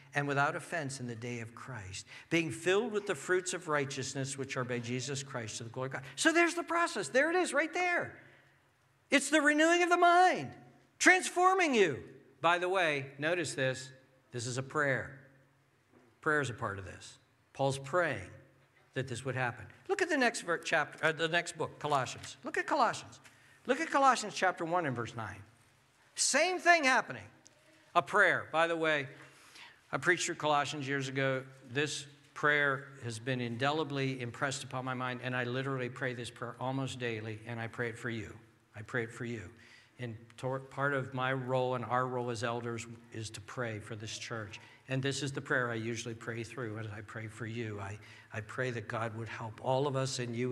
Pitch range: 120-155 Hz